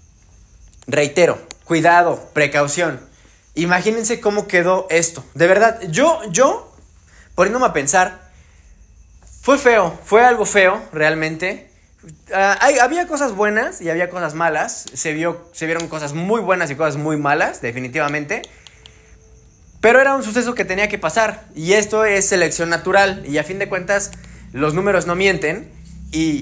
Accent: Mexican